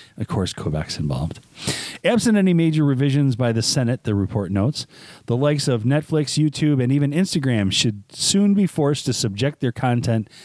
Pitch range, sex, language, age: 115-150 Hz, male, English, 40-59